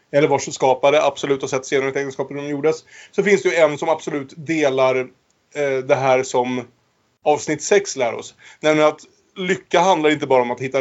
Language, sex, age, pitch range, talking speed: Swedish, male, 30-49, 120-145 Hz, 200 wpm